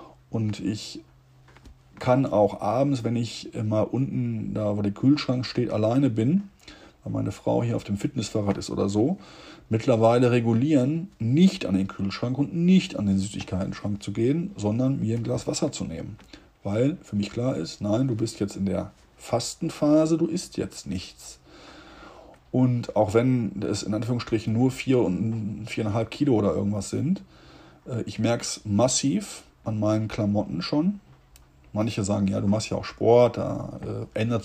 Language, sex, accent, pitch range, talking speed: German, male, German, 100-130 Hz, 165 wpm